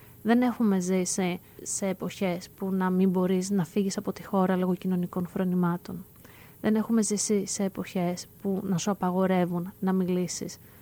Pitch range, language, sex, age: 185-225 Hz, Greek, female, 20-39